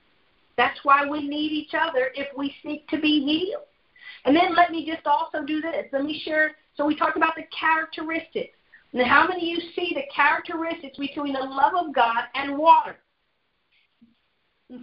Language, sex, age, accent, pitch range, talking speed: English, female, 50-69, American, 280-330 Hz, 180 wpm